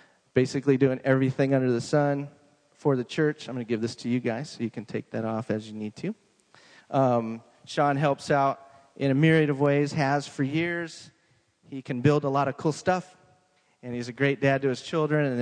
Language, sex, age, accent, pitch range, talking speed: English, male, 30-49, American, 115-150 Hz, 220 wpm